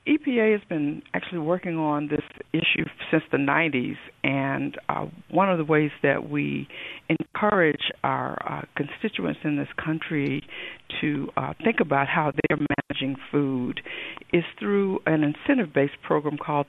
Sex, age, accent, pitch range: female, 60-79, American, 145-175 Hz